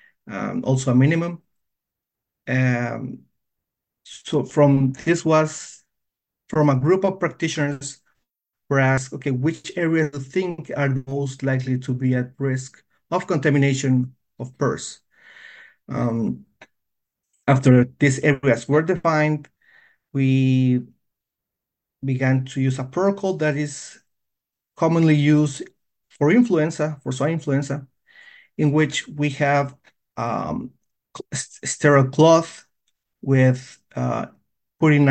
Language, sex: English, male